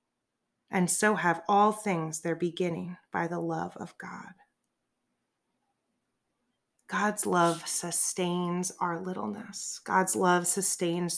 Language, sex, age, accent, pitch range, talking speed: English, female, 30-49, American, 180-225 Hz, 105 wpm